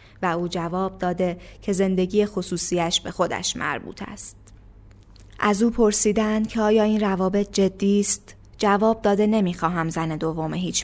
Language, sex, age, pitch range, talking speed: Persian, female, 20-39, 165-195 Hz, 145 wpm